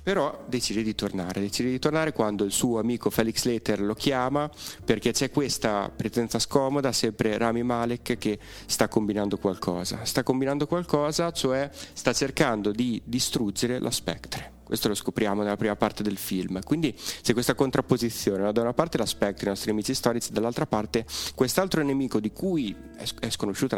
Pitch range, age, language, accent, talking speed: 105-130 Hz, 30-49, Italian, native, 165 wpm